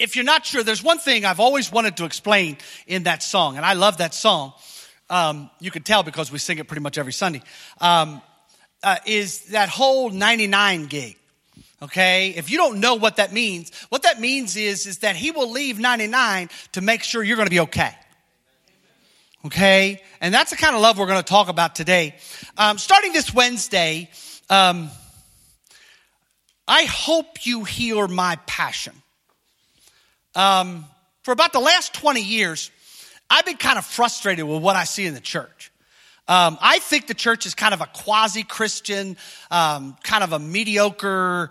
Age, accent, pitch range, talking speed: 40-59, American, 175-230 Hz, 180 wpm